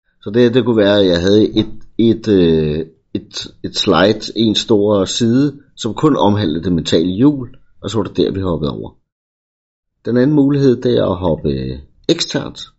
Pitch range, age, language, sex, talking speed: 90-115 Hz, 50-69, Danish, male, 180 wpm